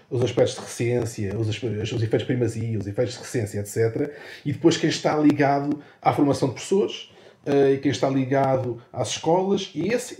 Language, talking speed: Portuguese, 175 wpm